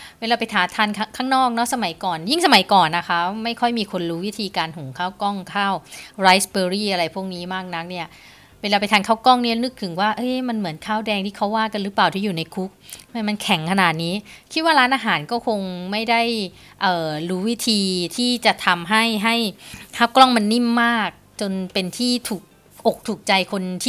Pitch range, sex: 180-235 Hz, female